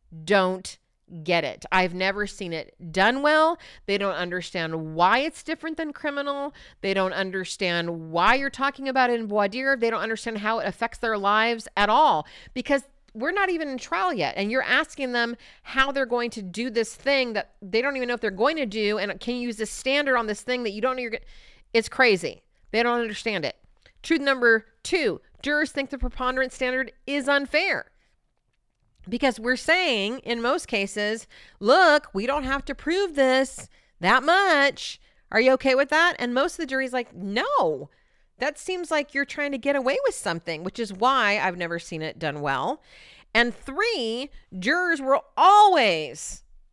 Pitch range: 200-280 Hz